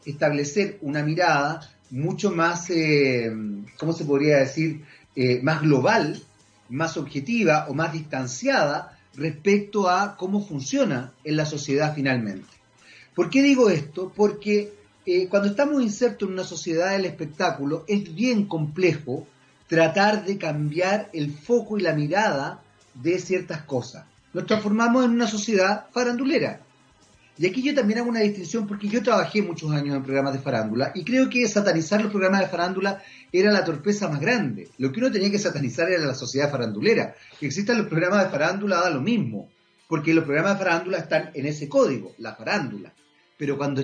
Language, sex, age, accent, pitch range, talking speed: Spanish, male, 40-59, Argentinian, 140-200 Hz, 165 wpm